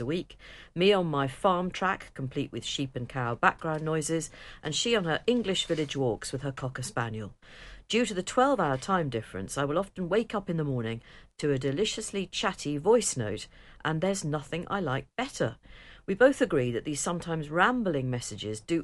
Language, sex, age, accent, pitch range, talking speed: English, female, 50-69, British, 125-180 Hz, 195 wpm